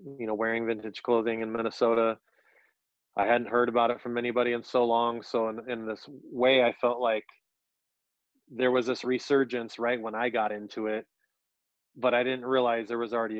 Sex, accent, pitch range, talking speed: male, American, 110-125 Hz, 190 wpm